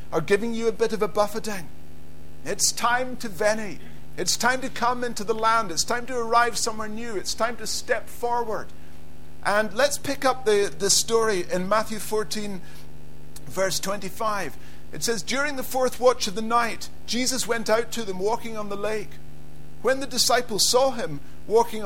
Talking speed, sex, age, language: 180 wpm, male, 50-69, English